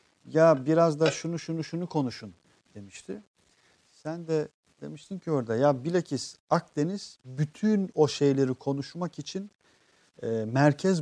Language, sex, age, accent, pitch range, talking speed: Turkish, male, 50-69, native, 125-165 Hz, 125 wpm